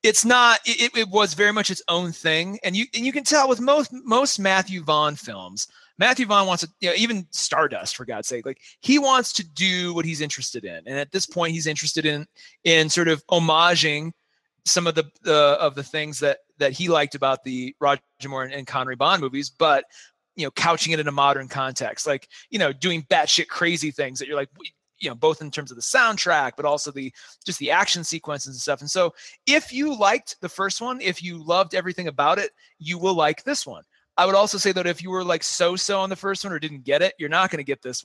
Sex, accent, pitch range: male, American, 150-200 Hz